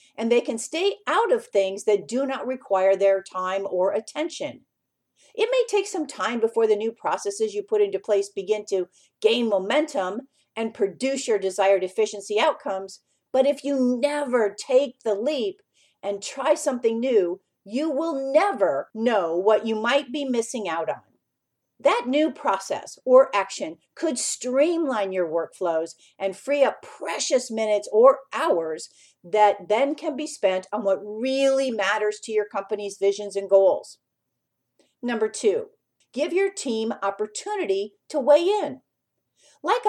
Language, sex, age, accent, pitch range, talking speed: English, female, 50-69, American, 200-290 Hz, 150 wpm